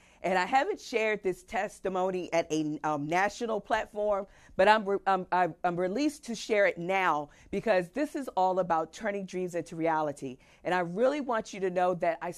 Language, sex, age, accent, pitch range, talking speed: English, female, 40-59, American, 160-200 Hz, 185 wpm